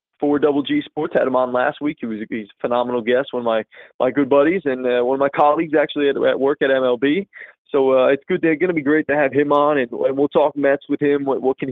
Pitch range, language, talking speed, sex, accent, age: 125-150 Hz, English, 290 wpm, male, American, 20-39